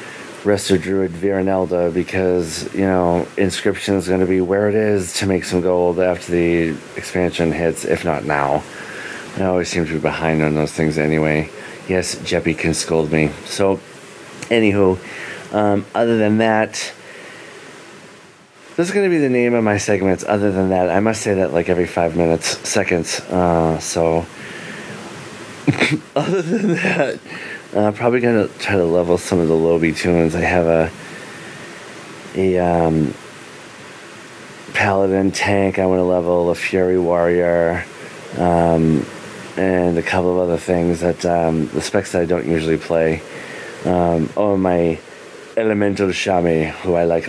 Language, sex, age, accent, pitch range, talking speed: English, male, 30-49, American, 85-105 Hz, 160 wpm